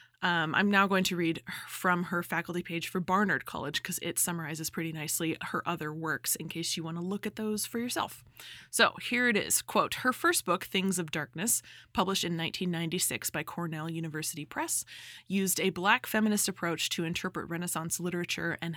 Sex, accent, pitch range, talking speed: female, American, 160-190 Hz, 190 wpm